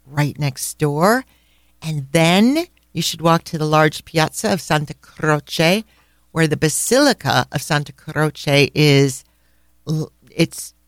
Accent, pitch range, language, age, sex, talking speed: American, 140-175 Hz, English, 50-69, female, 125 wpm